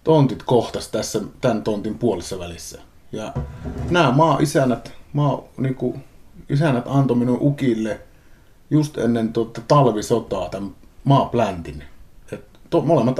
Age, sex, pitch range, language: 30-49, male, 110-135 Hz, Finnish